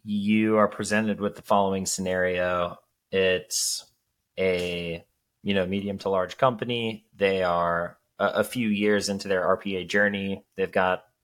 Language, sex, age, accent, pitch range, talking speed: English, male, 20-39, American, 90-105 Hz, 145 wpm